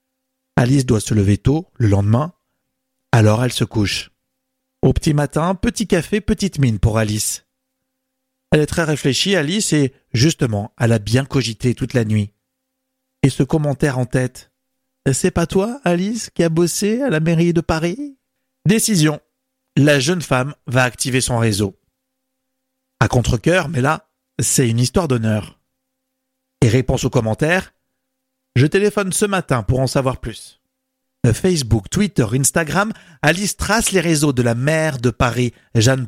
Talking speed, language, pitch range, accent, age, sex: 155 wpm, French, 125-210 Hz, French, 50-69, male